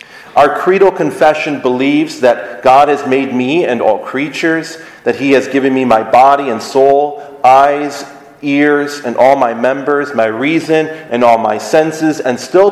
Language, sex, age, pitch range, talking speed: English, male, 40-59, 125-150 Hz, 165 wpm